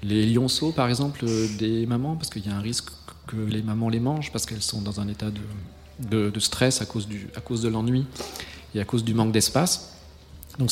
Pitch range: 105-130 Hz